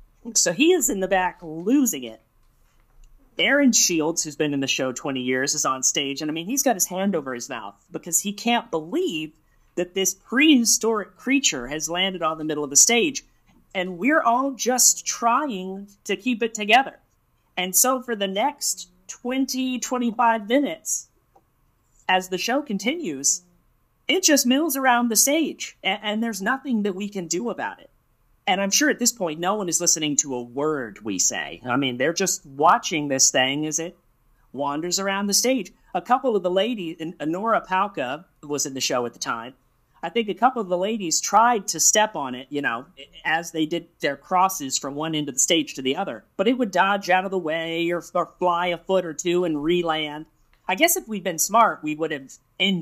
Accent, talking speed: American, 205 wpm